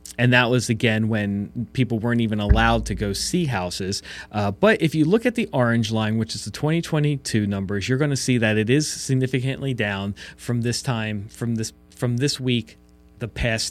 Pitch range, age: 105-140 Hz, 30-49